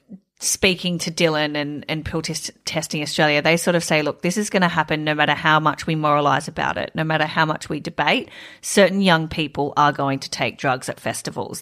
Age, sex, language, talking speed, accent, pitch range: 30-49, female, English, 215 wpm, Australian, 150-185 Hz